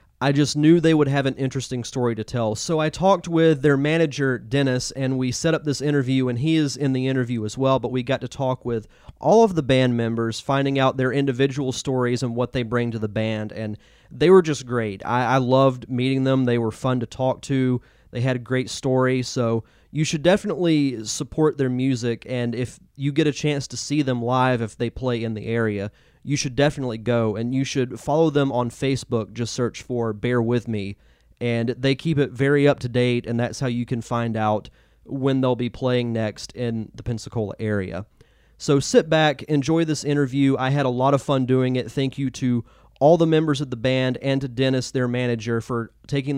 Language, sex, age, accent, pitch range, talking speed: English, male, 30-49, American, 115-140 Hz, 215 wpm